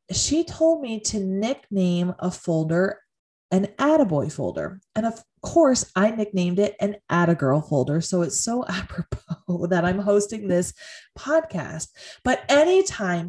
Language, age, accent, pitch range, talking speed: English, 20-39, American, 180-270 Hz, 135 wpm